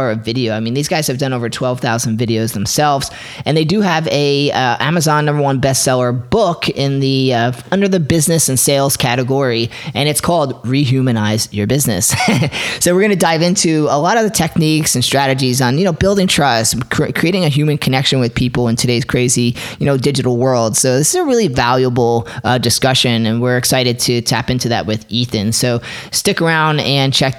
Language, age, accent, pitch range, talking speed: English, 30-49, American, 125-150 Hz, 205 wpm